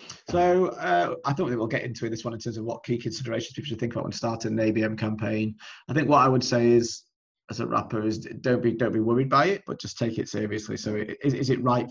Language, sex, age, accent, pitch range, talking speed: English, male, 30-49, British, 110-125 Hz, 265 wpm